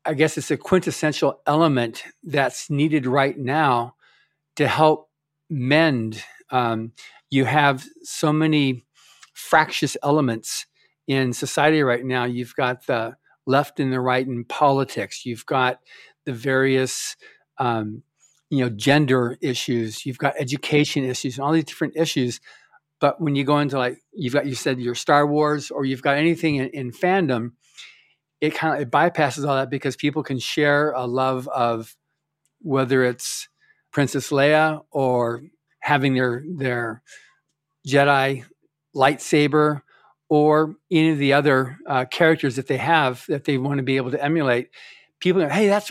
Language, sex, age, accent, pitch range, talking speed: English, male, 50-69, American, 130-155 Hz, 155 wpm